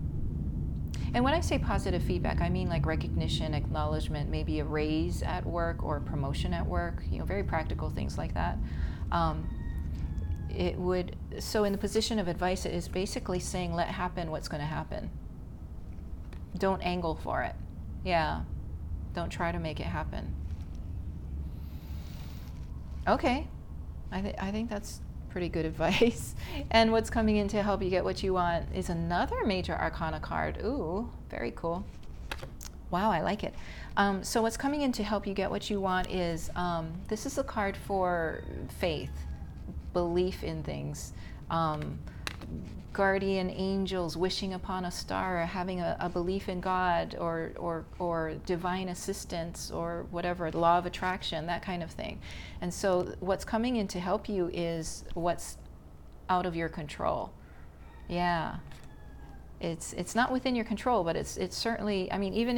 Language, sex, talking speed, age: English, female, 160 wpm, 40-59